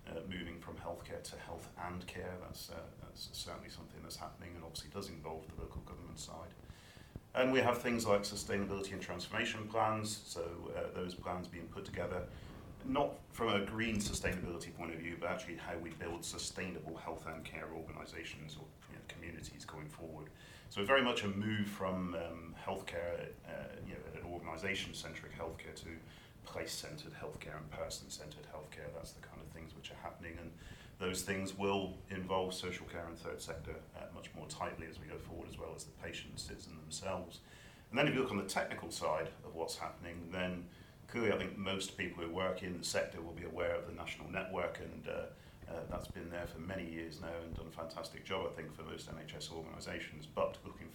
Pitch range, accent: 80-95 Hz, British